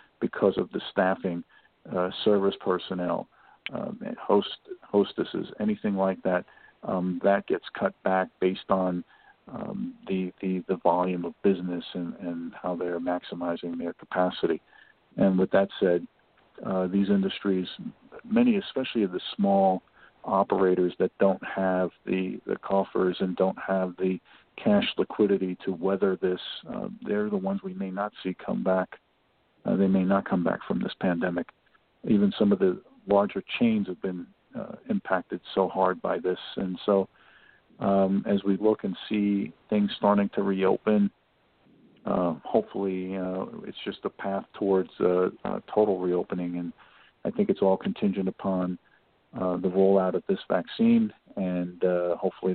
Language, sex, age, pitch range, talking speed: English, male, 50-69, 90-100 Hz, 155 wpm